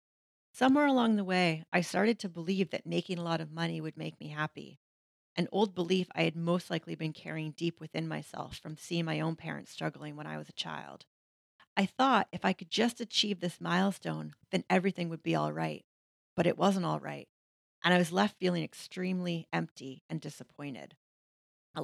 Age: 40-59